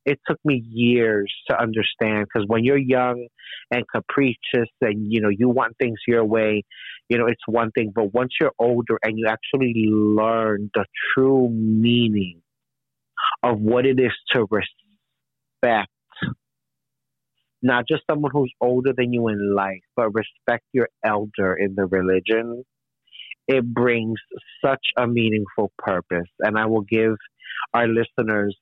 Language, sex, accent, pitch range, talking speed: English, male, American, 110-140 Hz, 145 wpm